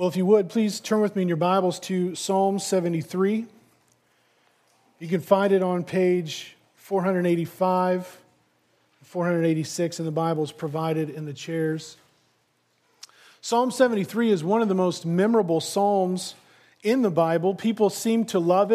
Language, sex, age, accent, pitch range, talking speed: English, male, 40-59, American, 160-210 Hz, 145 wpm